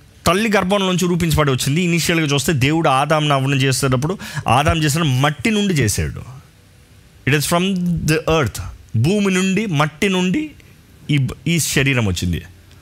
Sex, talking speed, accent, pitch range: male, 120 wpm, native, 115-185 Hz